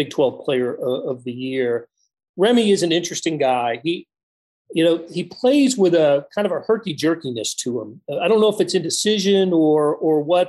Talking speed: 195 wpm